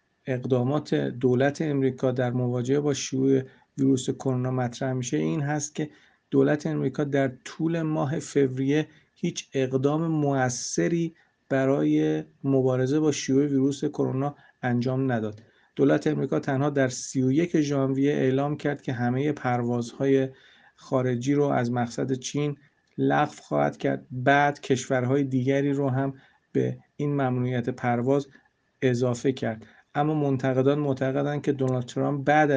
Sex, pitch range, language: male, 130-145 Hz, Persian